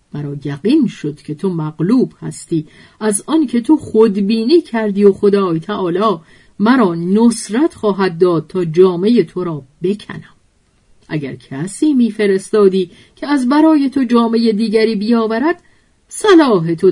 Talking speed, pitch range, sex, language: 130 wpm, 155-235 Hz, female, Persian